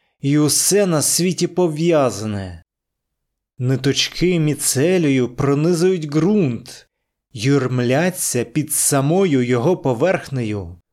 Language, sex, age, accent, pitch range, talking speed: Ukrainian, male, 30-49, native, 125-165 Hz, 75 wpm